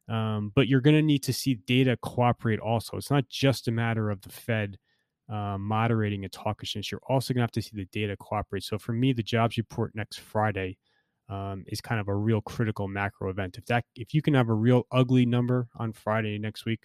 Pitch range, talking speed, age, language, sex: 100-120 Hz, 230 wpm, 20-39, English, male